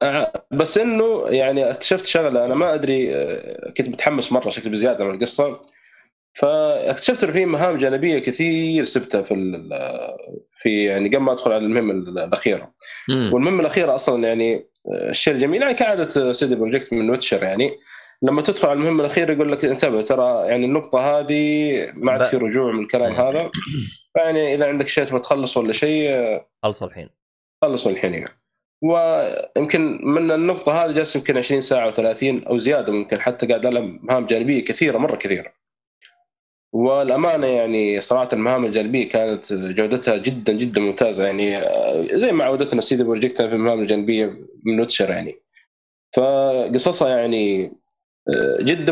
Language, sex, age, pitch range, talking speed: Arabic, male, 20-39, 115-165 Hz, 150 wpm